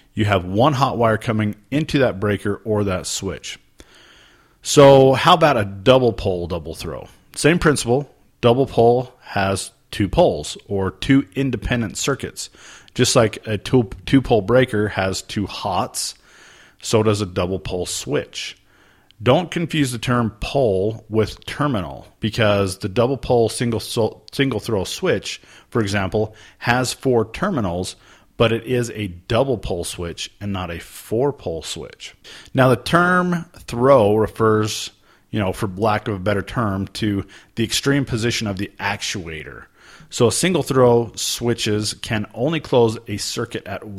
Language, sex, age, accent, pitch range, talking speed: English, male, 40-59, American, 100-125 Hz, 150 wpm